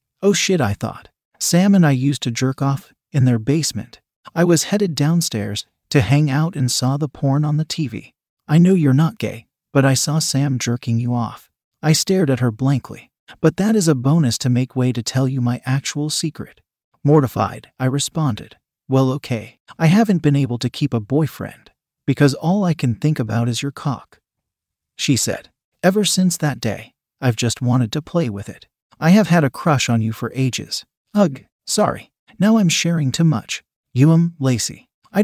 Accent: American